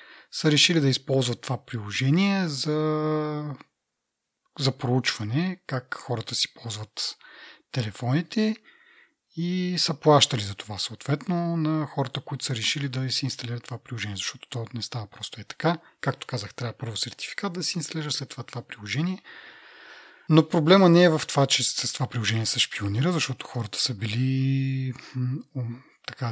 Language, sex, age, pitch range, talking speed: Bulgarian, male, 30-49, 120-155 Hz, 150 wpm